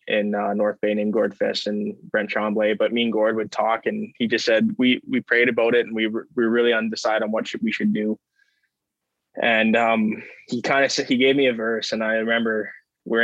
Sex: male